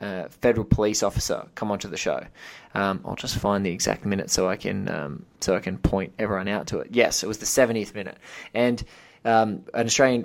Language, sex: English, male